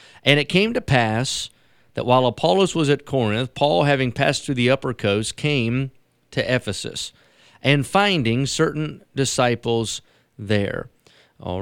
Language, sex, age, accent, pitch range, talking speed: English, male, 40-59, American, 115-140 Hz, 140 wpm